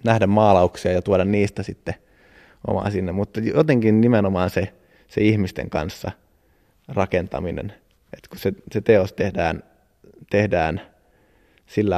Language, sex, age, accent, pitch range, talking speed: Finnish, male, 20-39, native, 90-110 Hz, 120 wpm